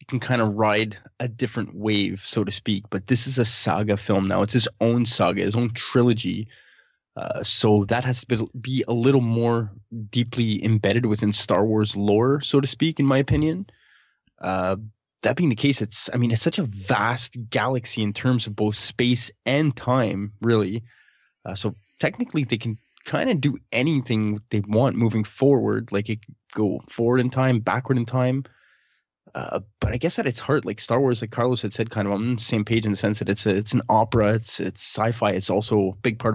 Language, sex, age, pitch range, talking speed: English, male, 20-39, 105-125 Hz, 205 wpm